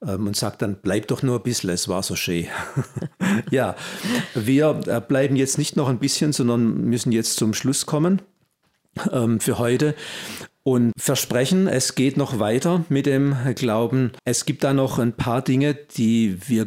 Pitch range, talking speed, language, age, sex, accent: 115-140 Hz, 170 wpm, German, 50-69, male, German